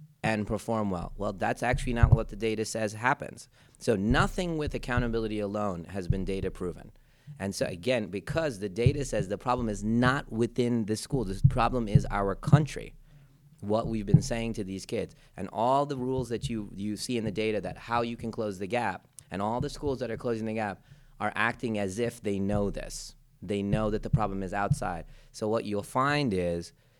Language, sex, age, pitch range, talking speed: English, male, 30-49, 100-130 Hz, 205 wpm